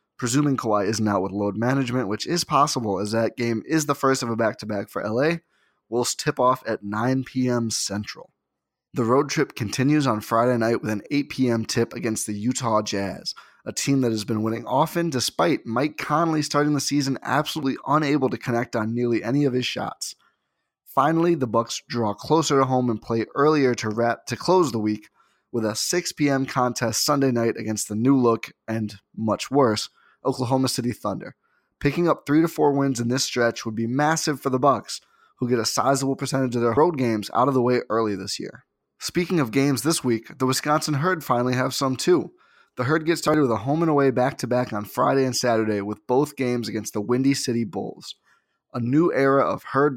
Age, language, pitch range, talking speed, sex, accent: 20-39, English, 115-140 Hz, 205 wpm, male, American